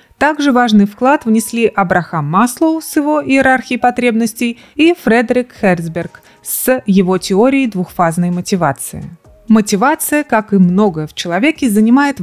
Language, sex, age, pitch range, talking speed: Russian, female, 30-49, 185-250 Hz, 125 wpm